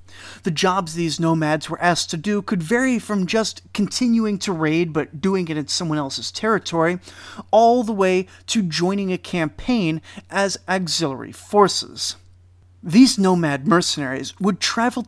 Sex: male